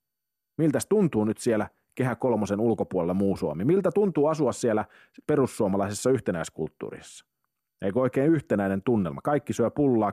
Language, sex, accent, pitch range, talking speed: Finnish, male, native, 100-135 Hz, 130 wpm